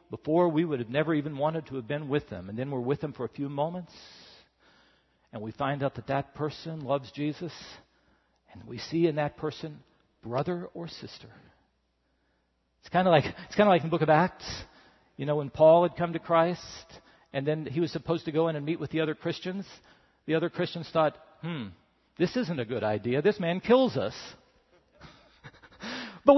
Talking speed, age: 195 wpm, 50-69